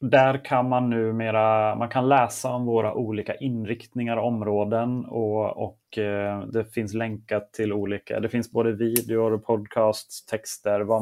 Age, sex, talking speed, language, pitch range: 30-49, male, 150 wpm, Swedish, 105-125 Hz